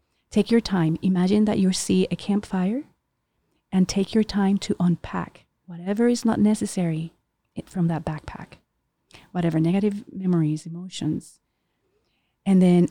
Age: 30-49